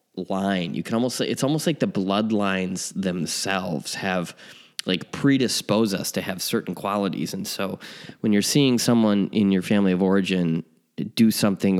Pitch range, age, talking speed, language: 90-105 Hz, 20-39, 165 wpm, English